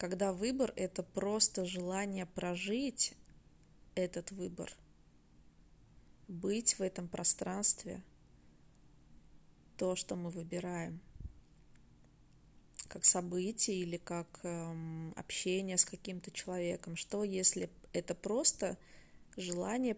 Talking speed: 95 wpm